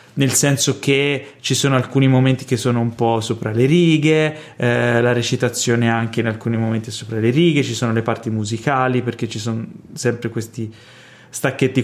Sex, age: male, 20-39